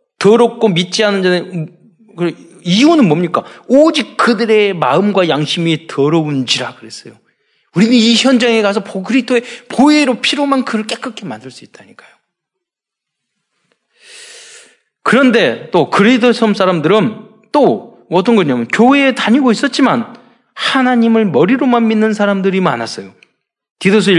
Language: Korean